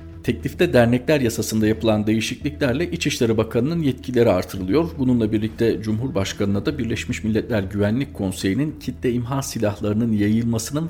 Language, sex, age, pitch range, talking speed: Turkish, male, 50-69, 100-130 Hz, 115 wpm